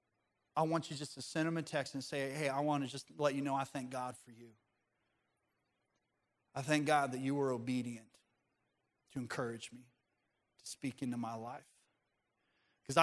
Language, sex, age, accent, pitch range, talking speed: English, male, 30-49, American, 145-180 Hz, 185 wpm